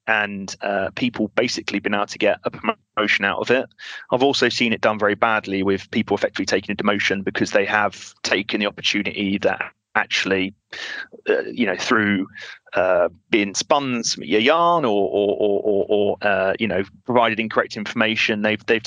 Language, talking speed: English, 180 wpm